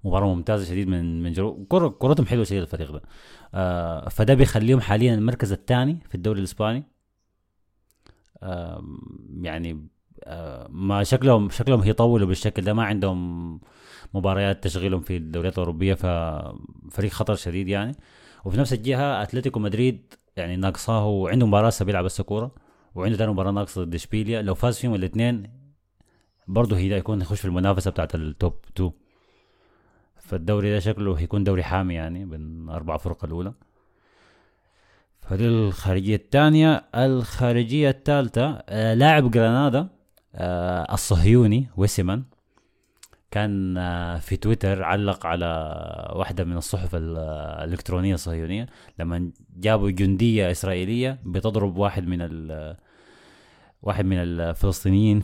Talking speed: 125 wpm